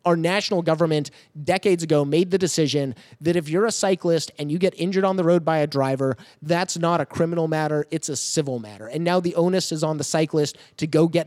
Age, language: 30-49, English